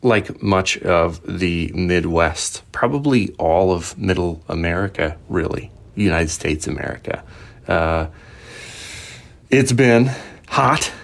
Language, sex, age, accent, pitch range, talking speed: English, male, 30-49, American, 85-105 Hz, 100 wpm